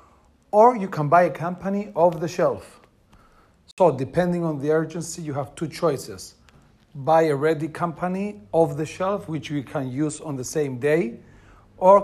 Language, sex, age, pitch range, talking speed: Greek, male, 40-59, 140-165 Hz, 170 wpm